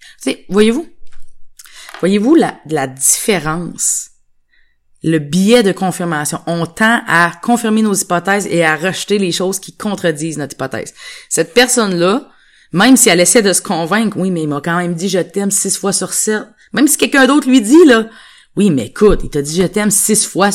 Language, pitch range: French, 155-205 Hz